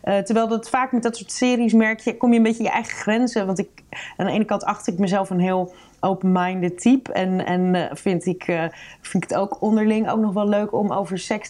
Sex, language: female, Dutch